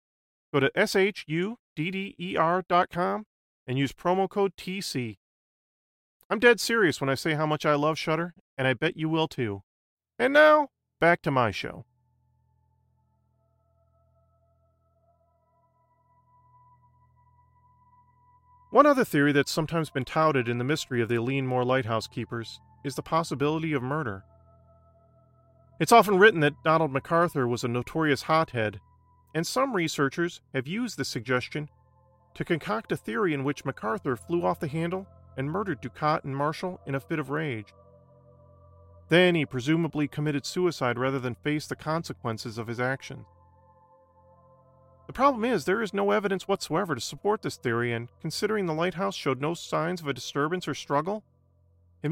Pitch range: 120-170 Hz